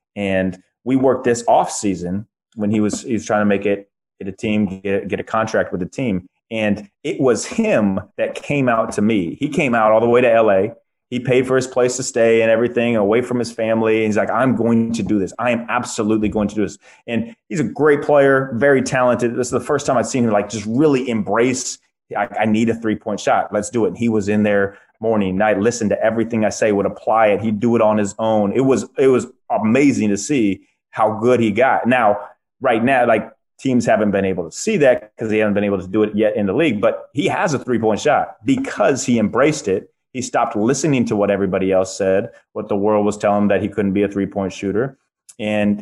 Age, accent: 30-49, American